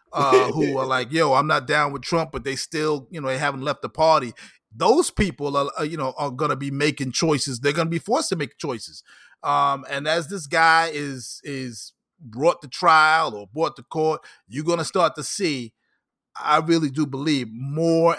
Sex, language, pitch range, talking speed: male, English, 130-165 Hz, 205 wpm